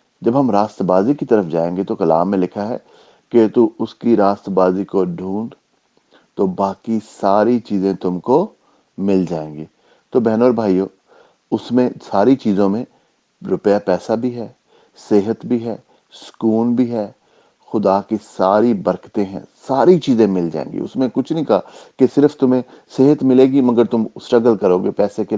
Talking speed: 155 wpm